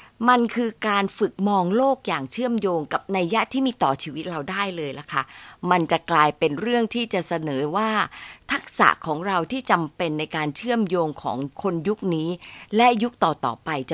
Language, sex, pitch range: Thai, female, 165-240 Hz